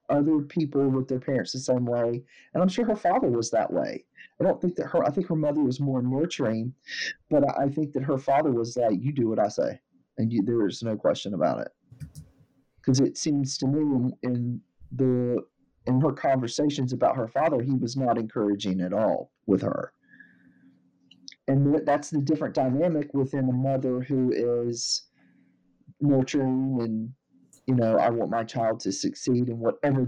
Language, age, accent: English, 40-59, American